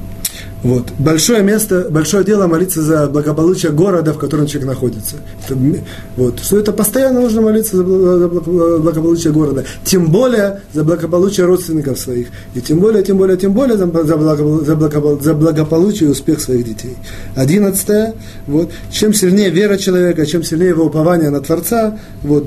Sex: male